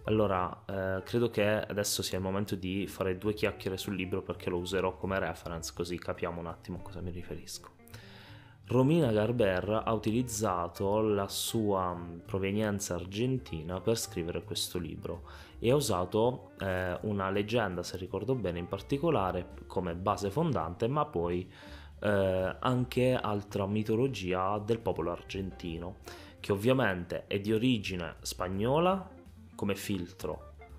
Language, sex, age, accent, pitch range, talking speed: Italian, male, 20-39, native, 90-110 Hz, 135 wpm